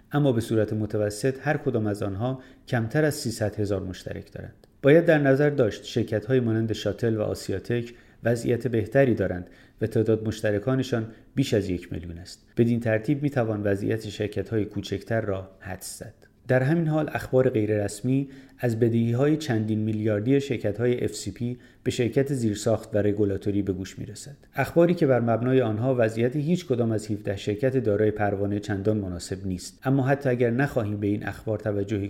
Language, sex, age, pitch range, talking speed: Persian, male, 30-49, 105-130 Hz, 175 wpm